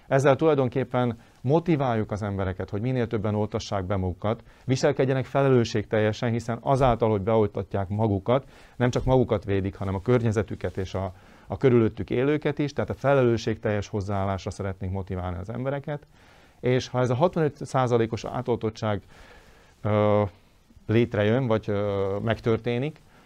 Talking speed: 125 wpm